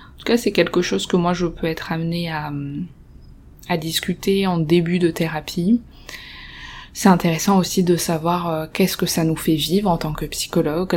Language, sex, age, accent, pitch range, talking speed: French, female, 20-39, French, 160-190 Hz, 190 wpm